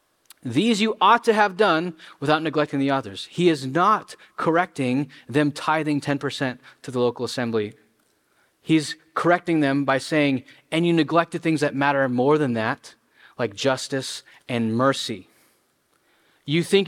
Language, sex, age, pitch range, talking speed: English, male, 20-39, 135-170 Hz, 145 wpm